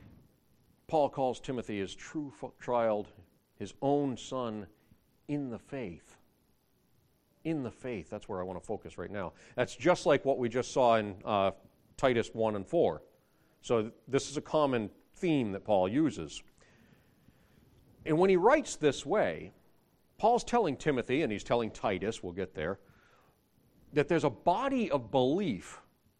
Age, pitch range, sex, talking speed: 40-59, 100-140 Hz, male, 155 wpm